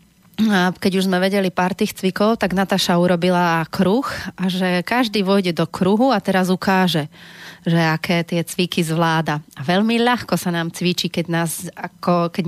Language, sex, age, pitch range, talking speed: Slovak, female, 30-49, 175-190 Hz, 175 wpm